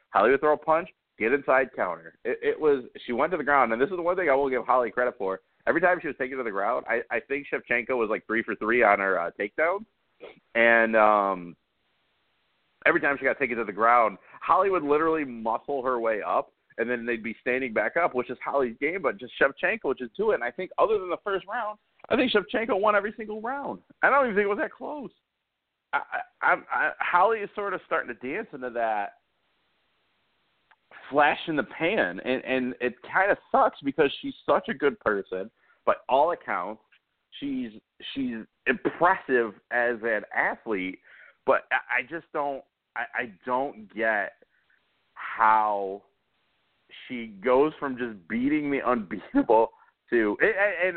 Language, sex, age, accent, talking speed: English, male, 30-49, American, 190 wpm